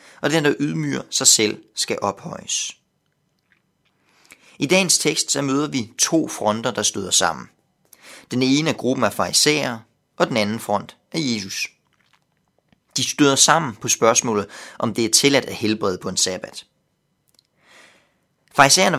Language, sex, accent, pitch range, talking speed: Danish, male, native, 110-145 Hz, 145 wpm